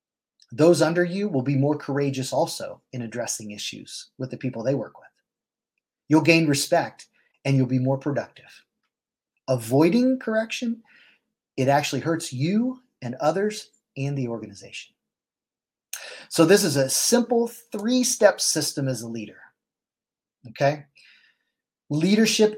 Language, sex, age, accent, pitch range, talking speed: English, male, 30-49, American, 130-180 Hz, 130 wpm